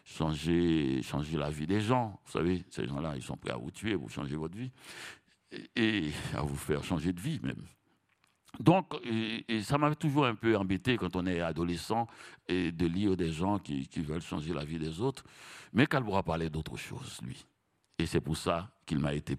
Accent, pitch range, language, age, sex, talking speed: French, 80-110 Hz, French, 60-79, male, 205 wpm